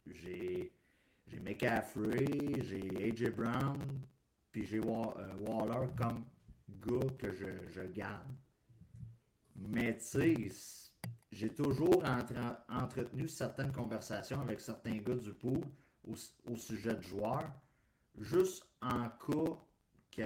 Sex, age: male, 50-69